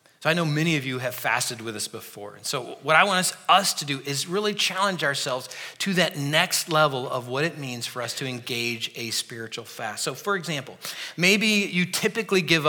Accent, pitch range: American, 130-195 Hz